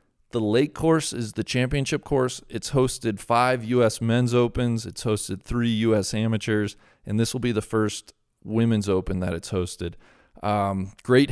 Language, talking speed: English, 165 wpm